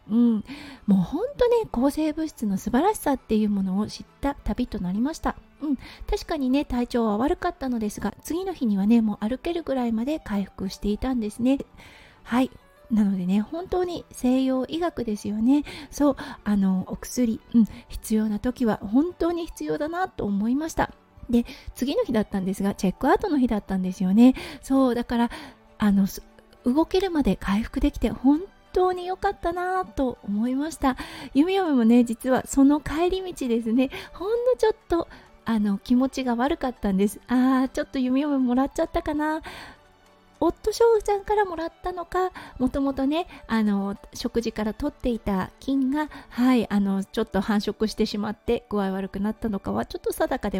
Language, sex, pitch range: Japanese, female, 215-310 Hz